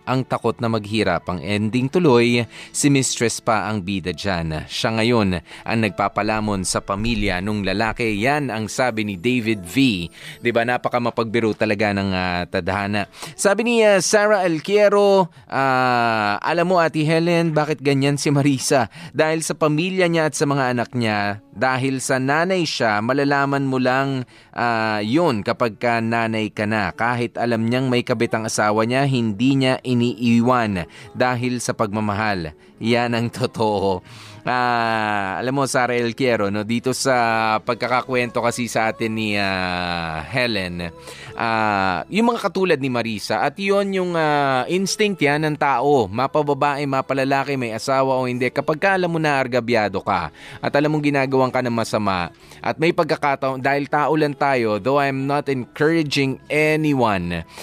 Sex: male